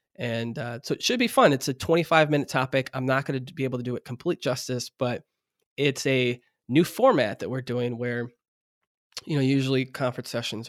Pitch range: 125-140 Hz